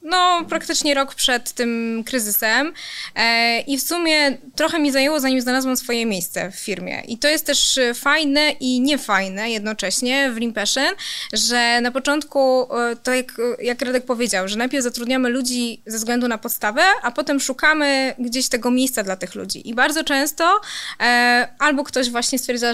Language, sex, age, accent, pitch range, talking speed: Polish, female, 20-39, native, 240-270 Hz, 160 wpm